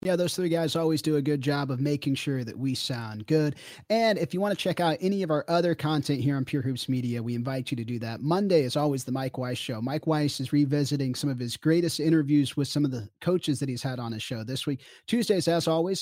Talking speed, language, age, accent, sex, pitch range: 265 wpm, English, 30-49, American, male, 135-170 Hz